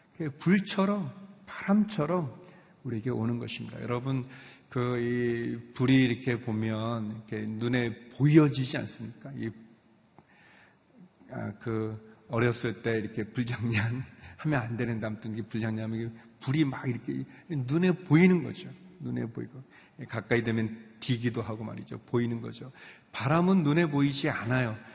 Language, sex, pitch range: Korean, male, 120-185 Hz